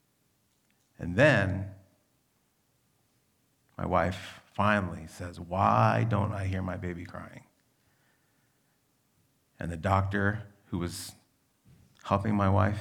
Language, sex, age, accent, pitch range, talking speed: English, male, 40-59, American, 100-135 Hz, 100 wpm